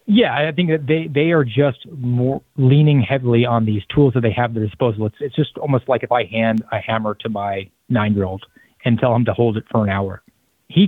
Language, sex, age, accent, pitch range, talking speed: English, male, 30-49, American, 110-130 Hz, 230 wpm